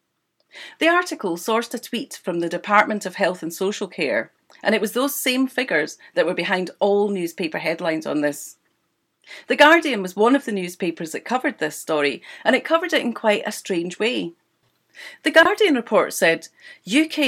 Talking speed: 180 wpm